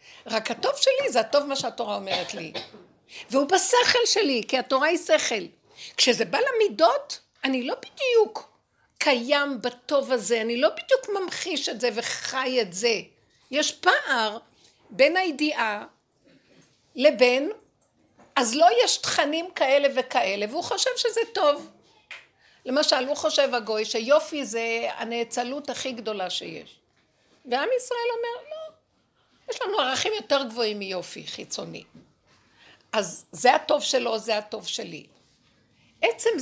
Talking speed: 125 wpm